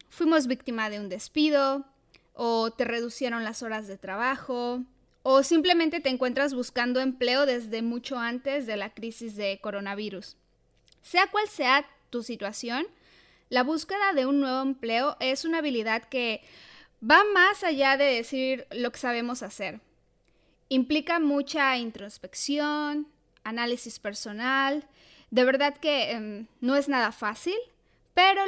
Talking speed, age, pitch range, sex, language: 135 wpm, 10-29, 235-285 Hz, female, Spanish